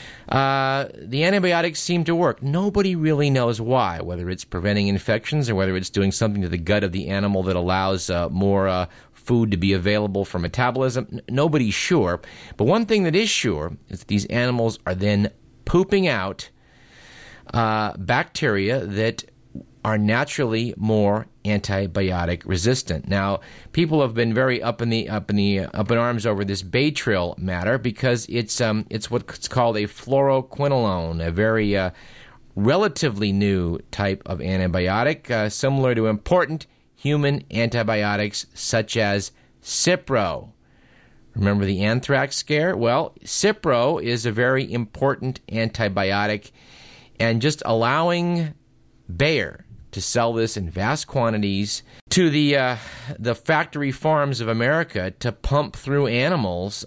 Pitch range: 95-130 Hz